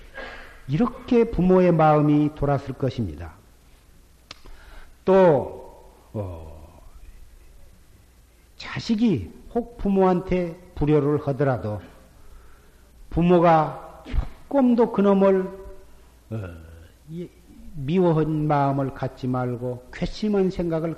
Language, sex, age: Korean, male, 50-69